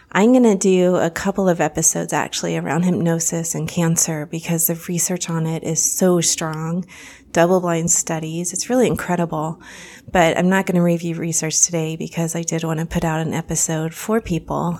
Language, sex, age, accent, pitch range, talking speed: English, female, 30-49, American, 165-195 Hz, 185 wpm